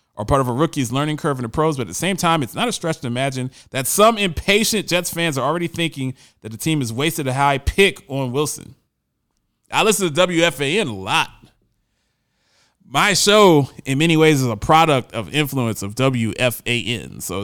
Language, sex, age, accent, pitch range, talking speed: English, male, 20-39, American, 125-165 Hz, 200 wpm